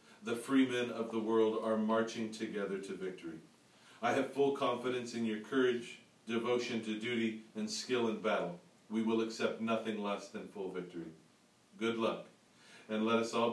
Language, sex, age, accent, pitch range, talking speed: English, male, 40-59, American, 105-140 Hz, 175 wpm